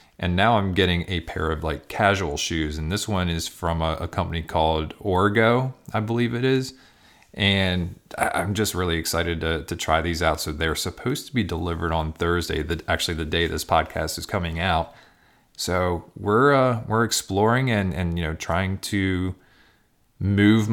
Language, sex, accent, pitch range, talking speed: English, male, American, 80-95 Hz, 185 wpm